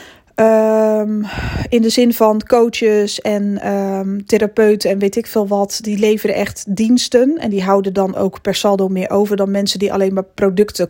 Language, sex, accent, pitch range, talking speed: Dutch, female, Dutch, 195-220 Hz, 170 wpm